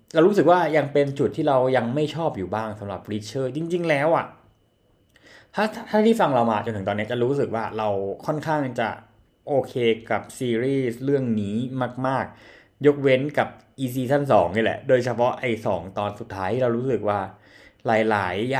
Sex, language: male, Thai